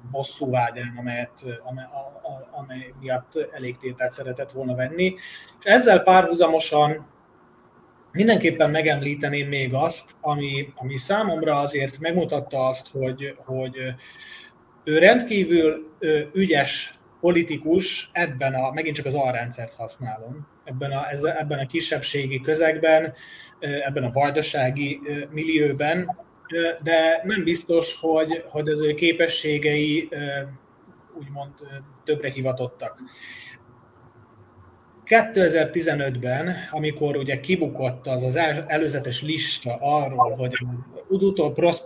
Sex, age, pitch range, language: male, 30-49, 130-160 Hz, Hungarian